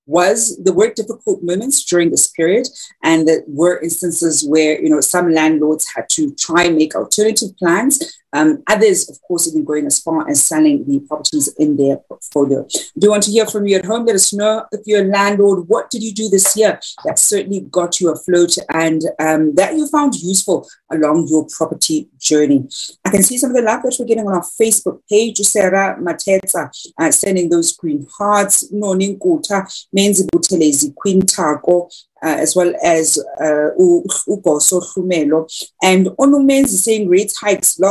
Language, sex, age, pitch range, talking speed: English, female, 40-59, 165-220 Hz, 180 wpm